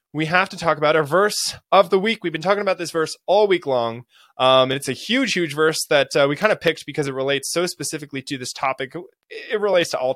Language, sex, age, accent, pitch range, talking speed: English, male, 20-39, American, 135-185 Hz, 265 wpm